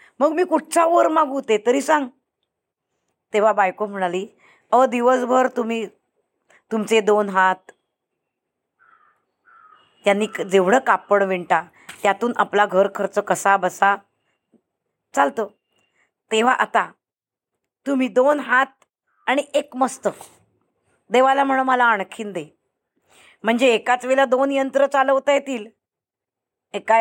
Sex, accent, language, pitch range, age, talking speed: female, native, Marathi, 210-265 Hz, 20-39, 110 wpm